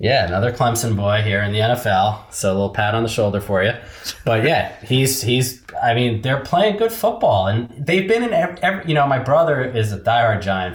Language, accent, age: English, American, 20-39